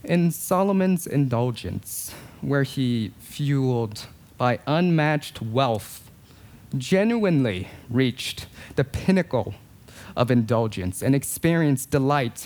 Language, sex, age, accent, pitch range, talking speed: English, male, 30-49, American, 110-150 Hz, 85 wpm